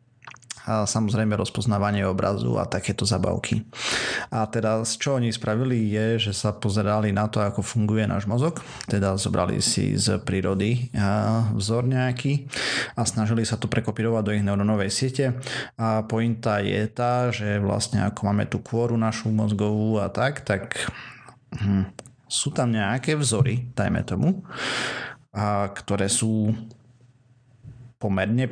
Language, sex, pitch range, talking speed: Slovak, male, 105-125 Hz, 135 wpm